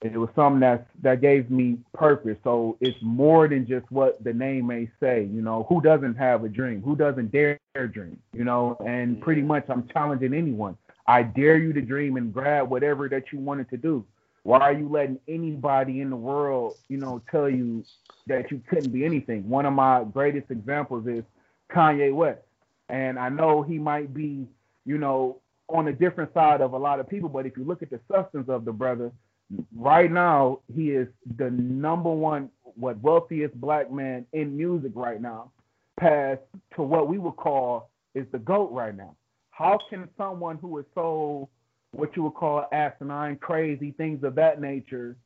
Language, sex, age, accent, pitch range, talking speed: English, male, 30-49, American, 125-150 Hz, 190 wpm